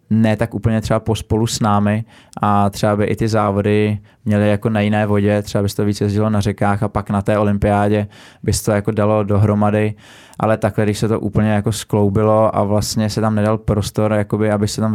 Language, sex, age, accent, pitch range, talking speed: Czech, male, 20-39, native, 100-110 Hz, 225 wpm